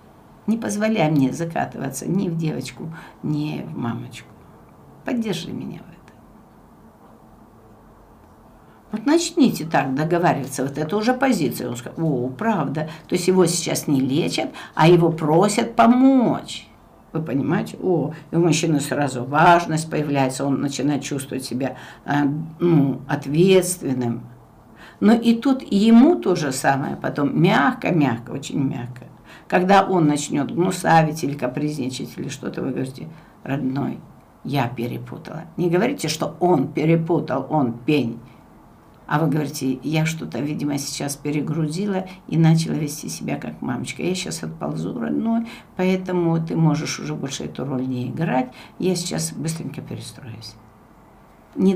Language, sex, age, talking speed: Russian, female, 60-79, 130 wpm